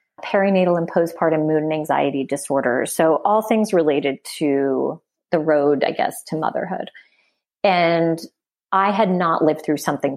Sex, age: female, 30-49